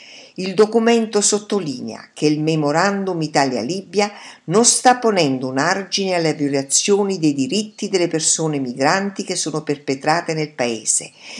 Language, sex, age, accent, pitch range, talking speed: Italian, female, 50-69, native, 135-200 Hz, 125 wpm